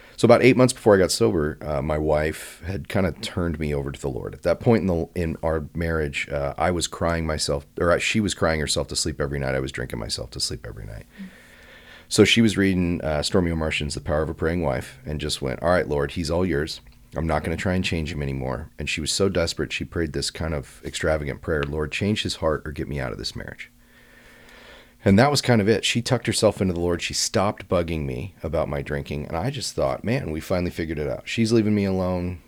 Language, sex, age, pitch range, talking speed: English, male, 30-49, 75-95 Hz, 255 wpm